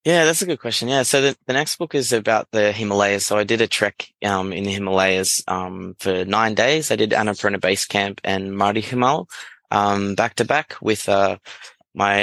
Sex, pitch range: male, 95-110 Hz